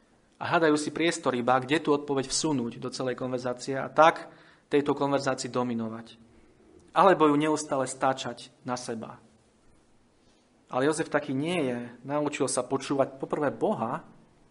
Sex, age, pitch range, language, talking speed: male, 40-59, 125-150 Hz, Slovak, 135 wpm